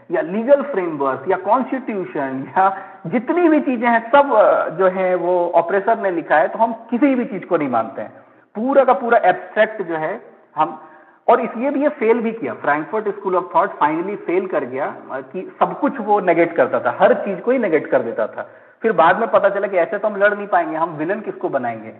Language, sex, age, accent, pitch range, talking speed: Hindi, male, 50-69, native, 165-235 Hz, 220 wpm